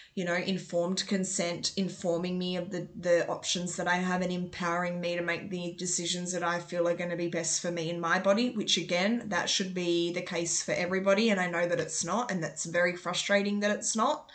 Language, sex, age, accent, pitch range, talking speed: English, female, 20-39, Australian, 175-200 Hz, 230 wpm